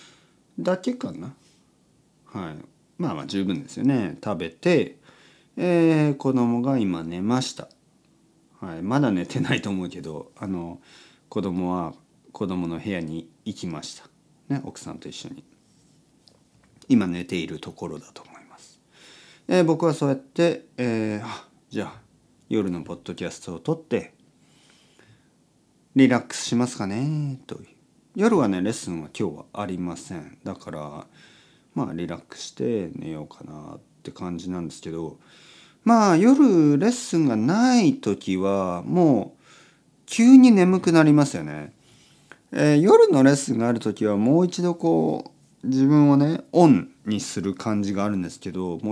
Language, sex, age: Japanese, male, 40-59